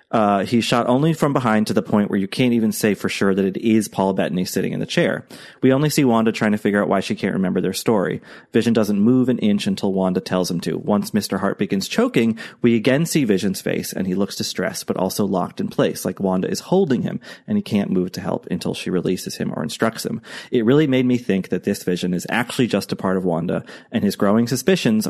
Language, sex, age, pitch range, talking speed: English, male, 30-49, 95-125 Hz, 250 wpm